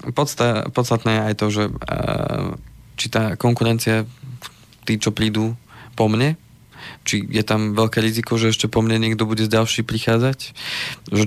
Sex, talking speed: male, 160 wpm